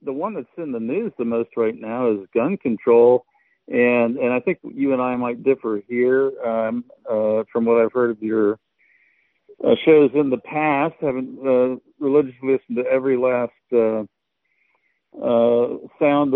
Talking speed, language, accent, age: 170 wpm, English, American, 60-79